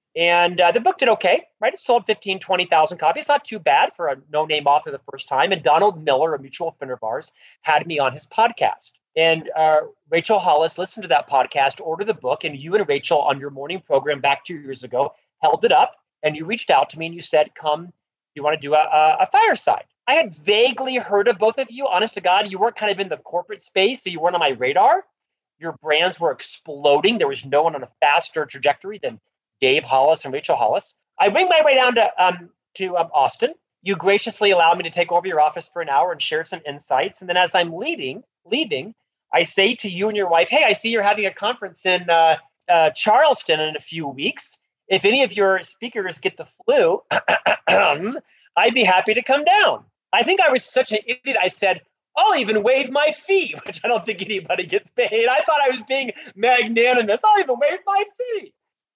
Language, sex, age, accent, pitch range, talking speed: English, male, 30-49, American, 160-245 Hz, 225 wpm